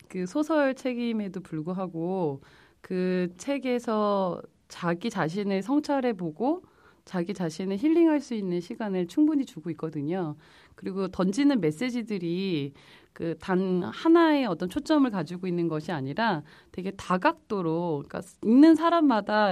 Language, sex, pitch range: Korean, female, 160-215 Hz